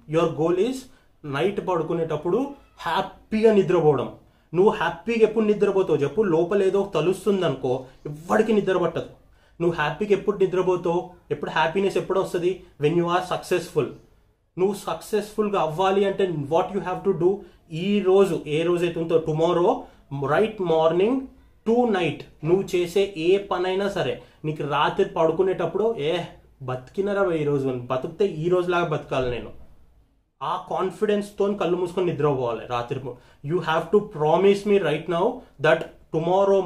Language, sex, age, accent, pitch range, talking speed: Telugu, male, 30-49, native, 160-195 Hz, 90 wpm